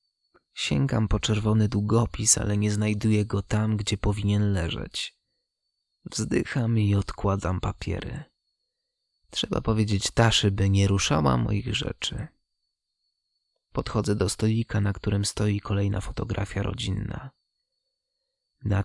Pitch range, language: 100-115 Hz, Polish